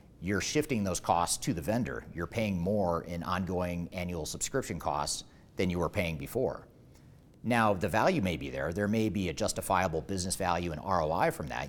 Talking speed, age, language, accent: 190 wpm, 40-59, English, American